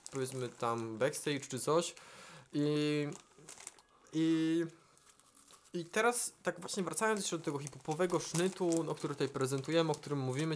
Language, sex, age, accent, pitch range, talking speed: Polish, male, 20-39, native, 140-180 Hz, 150 wpm